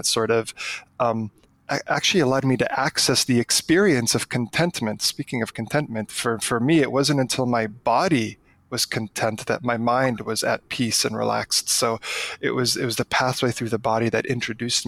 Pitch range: 115-135 Hz